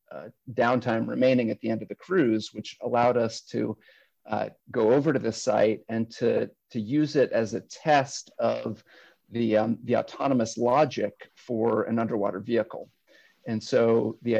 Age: 40-59